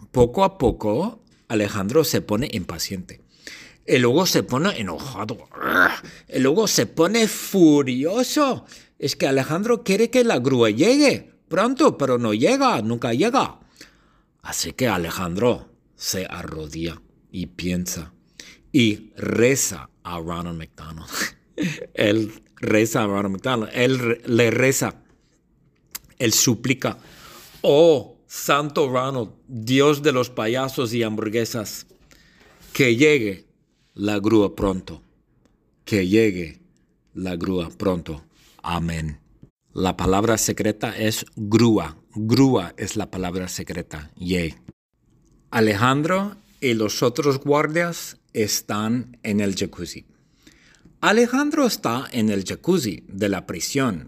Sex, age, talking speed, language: male, 50-69, 115 wpm, English